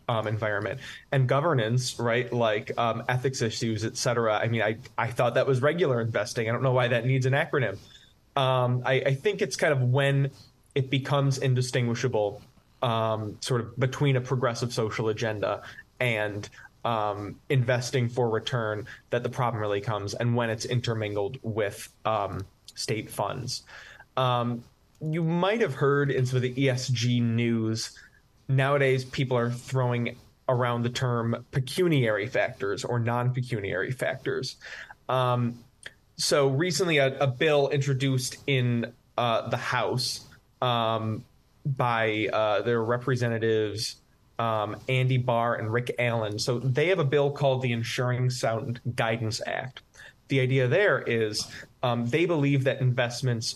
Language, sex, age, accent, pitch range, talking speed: English, male, 20-39, American, 115-135 Hz, 145 wpm